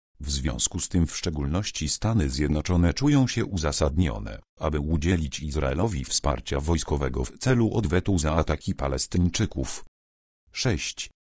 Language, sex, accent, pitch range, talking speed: Polish, male, native, 70-105 Hz, 120 wpm